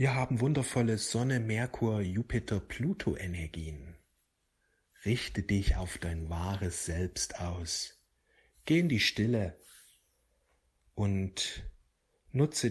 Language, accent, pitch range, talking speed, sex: German, German, 90-110 Hz, 100 wpm, male